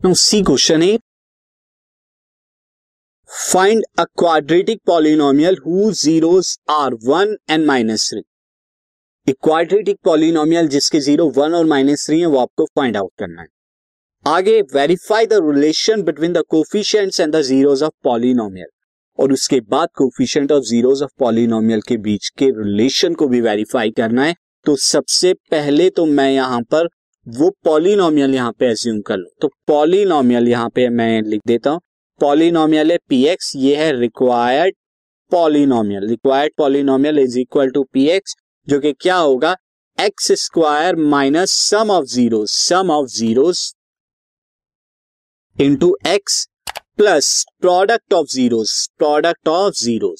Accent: native